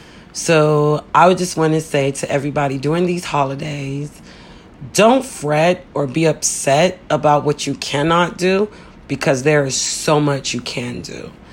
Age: 40-59